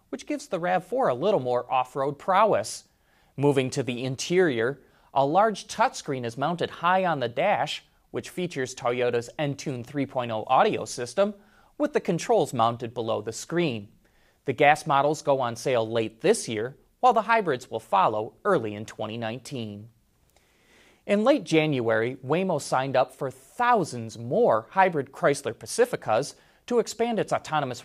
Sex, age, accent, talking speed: male, 30-49, American, 150 wpm